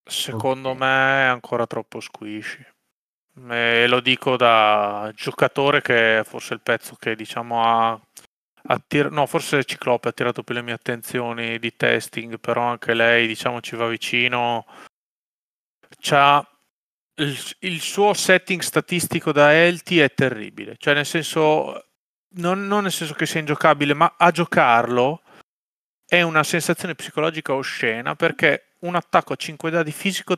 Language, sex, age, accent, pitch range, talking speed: Italian, male, 30-49, native, 120-160 Hz, 140 wpm